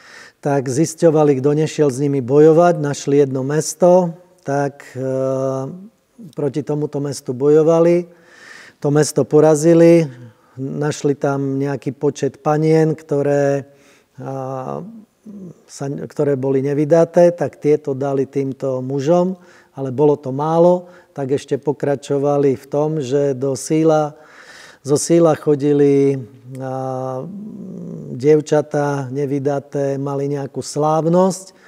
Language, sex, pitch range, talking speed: Slovak, male, 140-155 Hz, 105 wpm